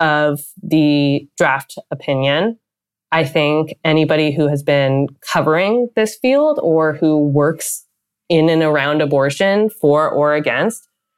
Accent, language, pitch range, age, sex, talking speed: American, English, 140-180 Hz, 20-39, female, 125 wpm